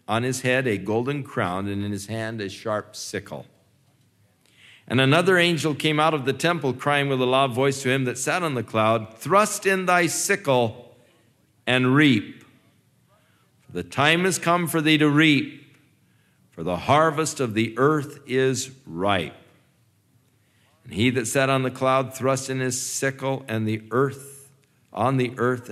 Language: English